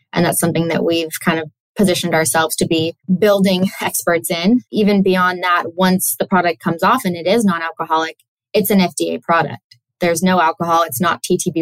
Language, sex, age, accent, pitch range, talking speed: English, female, 20-39, American, 160-185 Hz, 190 wpm